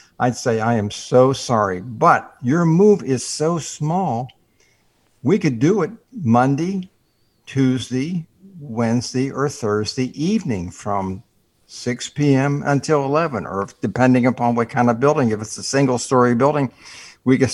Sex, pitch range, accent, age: male, 115-150 Hz, American, 60-79